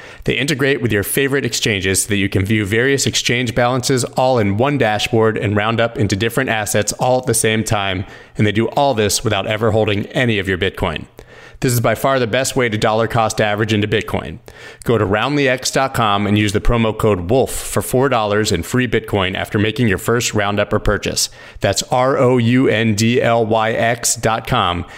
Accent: American